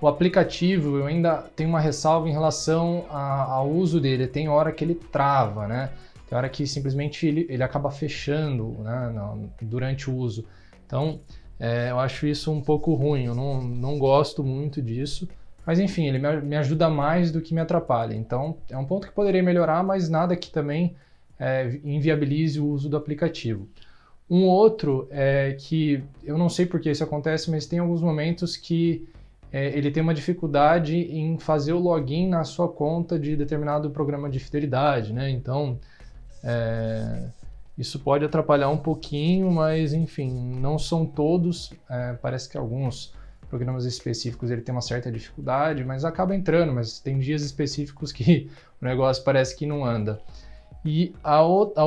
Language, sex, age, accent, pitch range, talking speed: Portuguese, male, 20-39, Brazilian, 130-160 Hz, 160 wpm